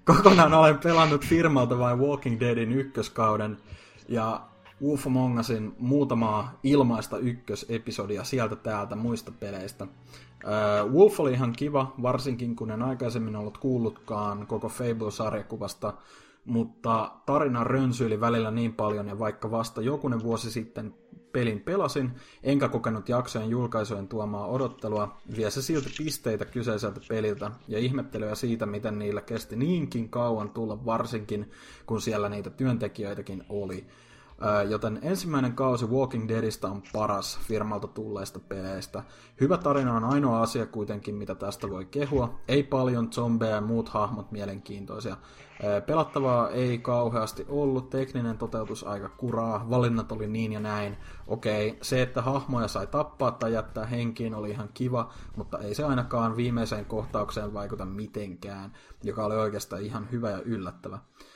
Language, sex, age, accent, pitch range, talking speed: Finnish, male, 30-49, native, 105-125 Hz, 135 wpm